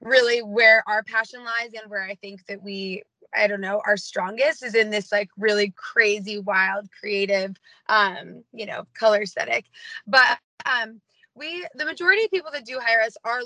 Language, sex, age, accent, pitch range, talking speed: English, female, 20-39, American, 205-240 Hz, 185 wpm